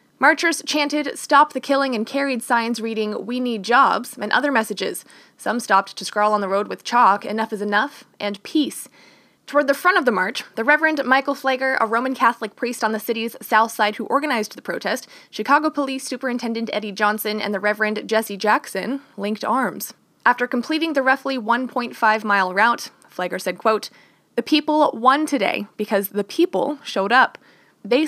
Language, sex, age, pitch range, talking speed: English, female, 20-39, 205-255 Hz, 175 wpm